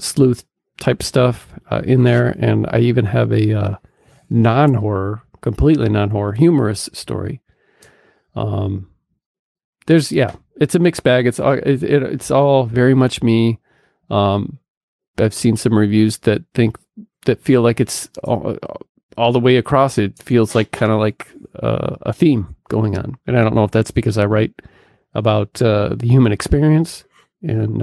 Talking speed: 160 wpm